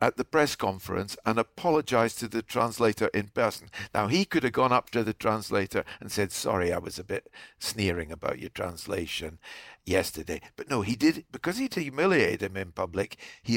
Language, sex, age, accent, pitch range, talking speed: English, male, 60-79, British, 100-155 Hz, 190 wpm